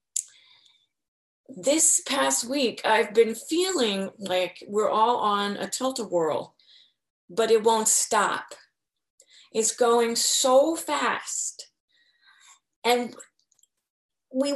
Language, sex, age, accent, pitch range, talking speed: English, female, 30-49, American, 195-265 Hz, 95 wpm